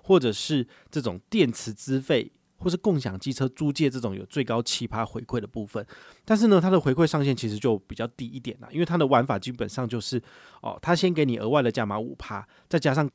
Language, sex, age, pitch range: Chinese, male, 30-49, 105-135 Hz